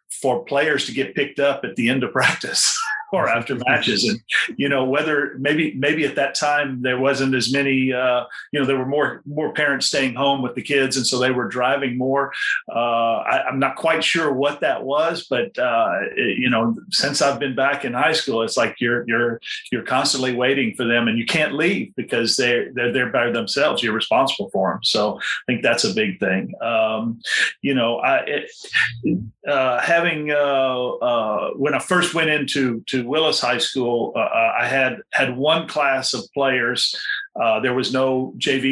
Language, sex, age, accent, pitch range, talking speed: English, male, 40-59, American, 120-145 Hz, 200 wpm